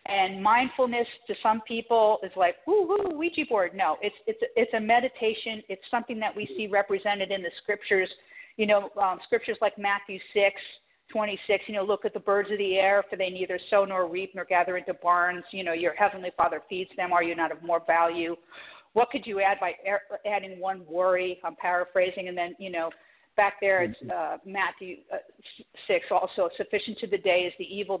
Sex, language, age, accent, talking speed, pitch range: female, English, 50-69, American, 200 wpm, 180-210 Hz